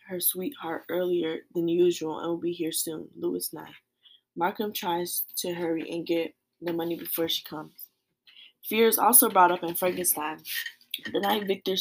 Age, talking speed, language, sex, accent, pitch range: 10-29, 165 wpm, English, female, American, 165-190 Hz